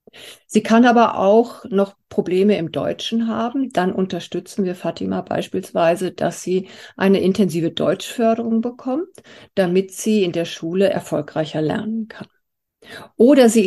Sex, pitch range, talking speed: female, 175-220 Hz, 130 wpm